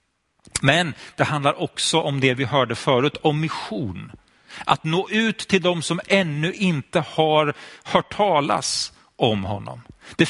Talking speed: 145 wpm